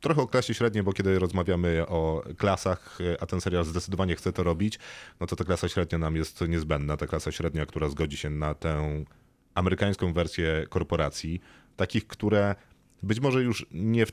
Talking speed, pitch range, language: 180 wpm, 80-95 Hz, Polish